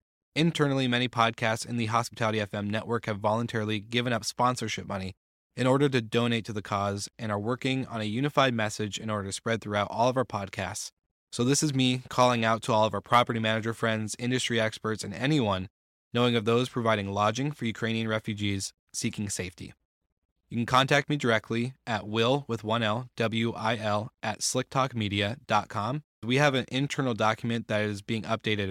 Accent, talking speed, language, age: American, 180 wpm, English, 20-39